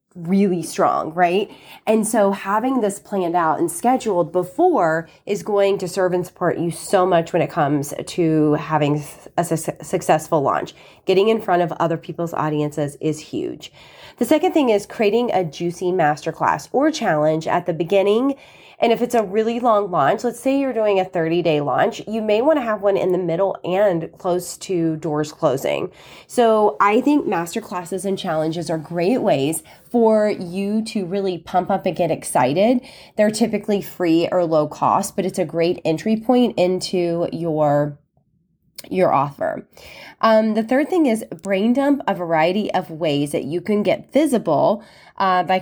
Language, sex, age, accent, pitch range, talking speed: English, female, 30-49, American, 165-220 Hz, 175 wpm